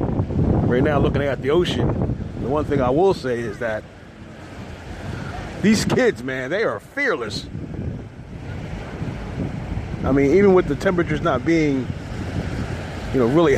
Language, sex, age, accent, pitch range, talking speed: English, male, 30-49, American, 115-165 Hz, 135 wpm